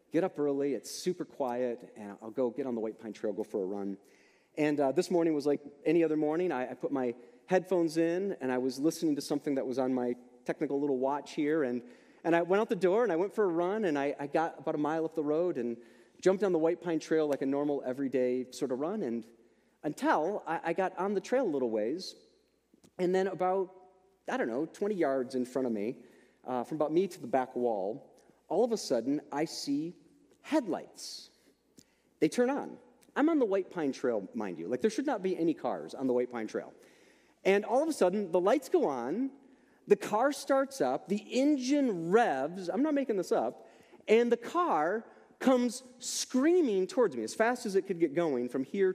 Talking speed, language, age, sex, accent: 225 wpm, English, 30-49, male, American